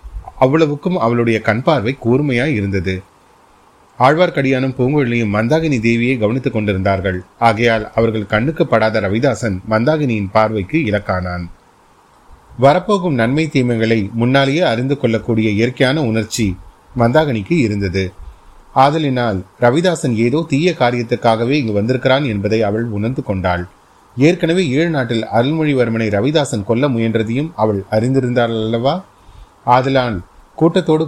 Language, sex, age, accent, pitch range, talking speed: Tamil, male, 30-49, native, 110-135 Hz, 100 wpm